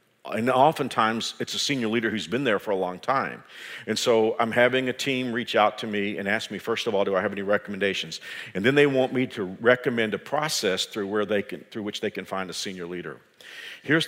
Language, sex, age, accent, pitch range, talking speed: English, male, 50-69, American, 105-135 Hz, 240 wpm